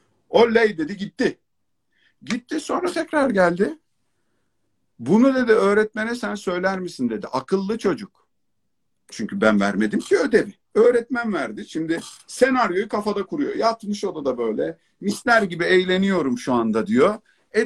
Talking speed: 125 wpm